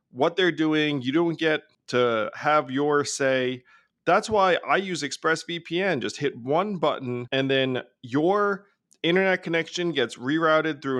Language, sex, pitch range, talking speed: English, male, 130-170 Hz, 145 wpm